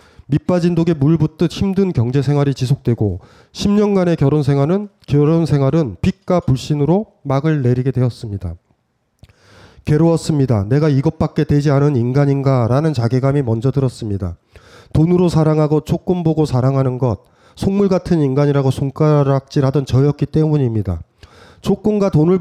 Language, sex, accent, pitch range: Korean, male, native, 120-165 Hz